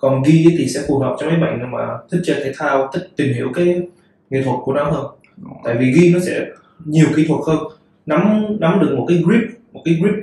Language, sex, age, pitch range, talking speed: Vietnamese, male, 20-39, 145-190 Hz, 235 wpm